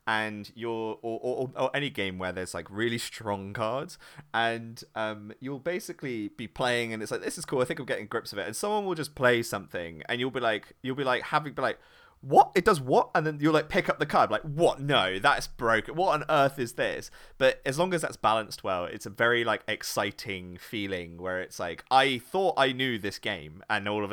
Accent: British